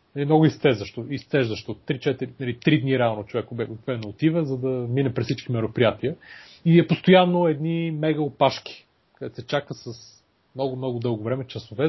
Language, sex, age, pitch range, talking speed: Bulgarian, male, 30-49, 110-130 Hz, 150 wpm